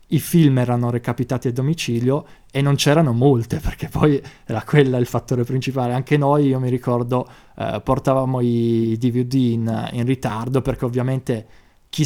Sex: male